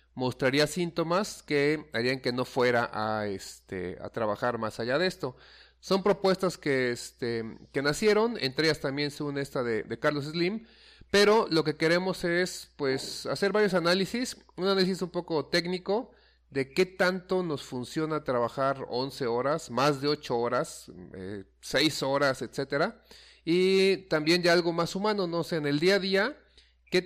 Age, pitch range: 40-59, 125-175 Hz